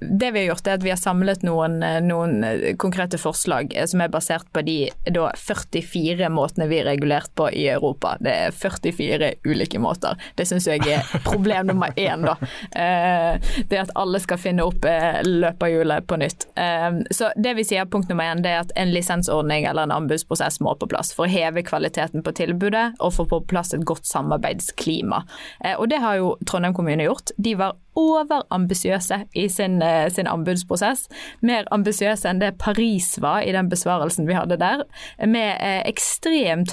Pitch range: 170-215 Hz